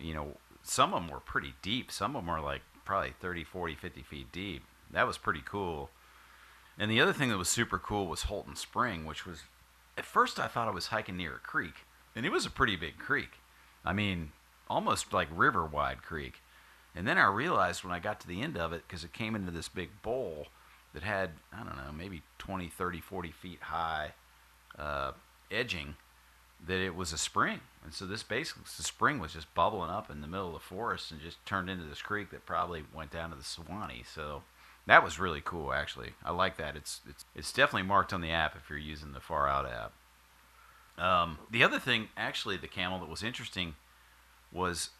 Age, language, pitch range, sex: 40-59, English, 75-95 Hz, male